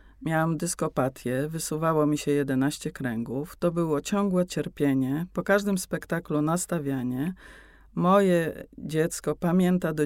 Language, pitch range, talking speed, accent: Polish, 140-175 Hz, 115 wpm, native